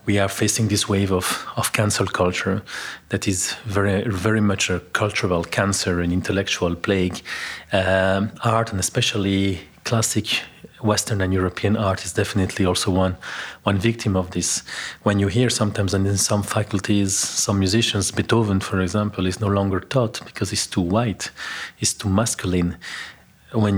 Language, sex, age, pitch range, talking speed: Hungarian, male, 30-49, 95-110 Hz, 155 wpm